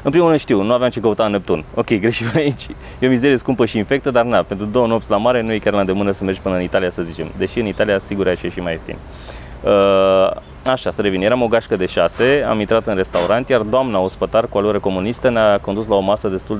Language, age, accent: Romanian, 20-39, native